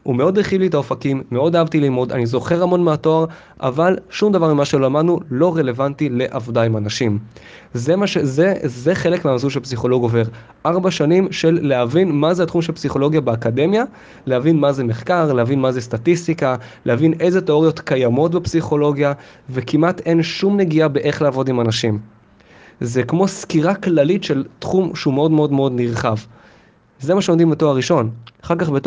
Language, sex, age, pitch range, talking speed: English, male, 20-39, 120-160 Hz, 165 wpm